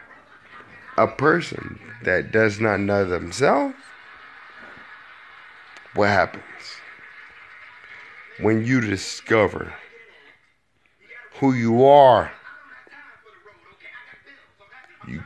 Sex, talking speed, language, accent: male, 65 wpm, English, American